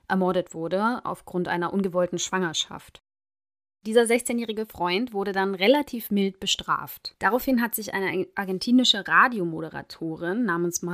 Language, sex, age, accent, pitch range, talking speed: German, female, 20-39, German, 180-220 Hz, 115 wpm